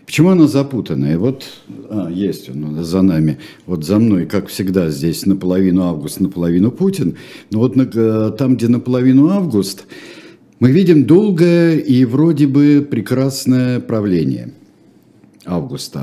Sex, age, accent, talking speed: male, 50-69, native, 130 wpm